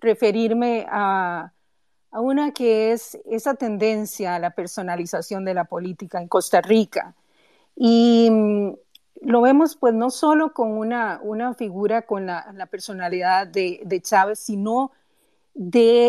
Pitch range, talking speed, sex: 195-245 Hz, 135 wpm, female